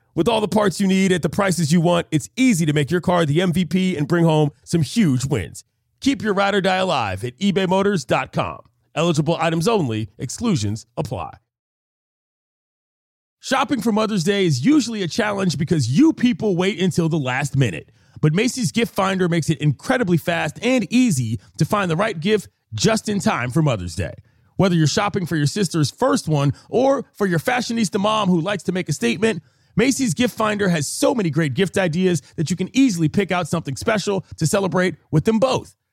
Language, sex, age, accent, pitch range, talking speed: English, male, 30-49, American, 150-215 Hz, 190 wpm